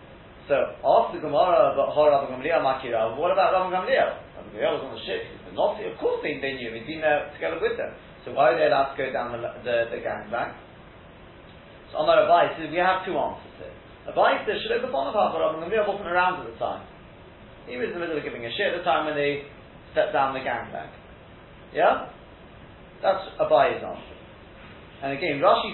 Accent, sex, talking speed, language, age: British, male, 190 wpm, English, 30-49